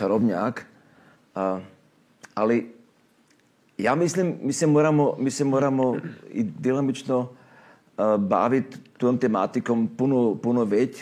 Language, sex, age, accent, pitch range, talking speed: Croatian, male, 50-69, native, 110-130 Hz, 100 wpm